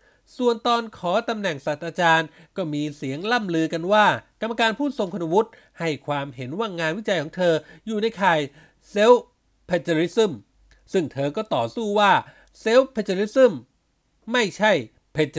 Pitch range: 150-215 Hz